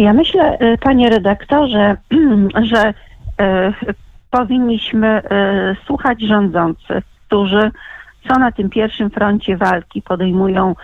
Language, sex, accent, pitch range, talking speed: Polish, female, native, 190-225 Hz, 90 wpm